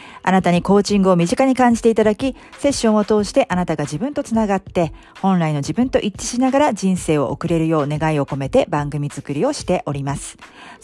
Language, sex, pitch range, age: Japanese, female, 155-215 Hz, 40-59